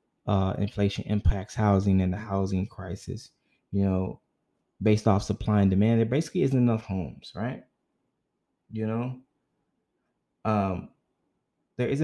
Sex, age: male, 20-39